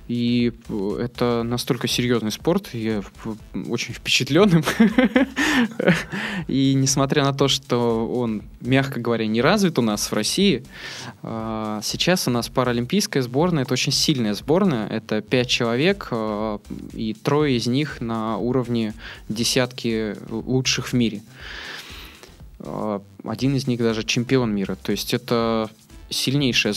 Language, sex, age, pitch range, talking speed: Russian, male, 20-39, 115-155 Hz, 120 wpm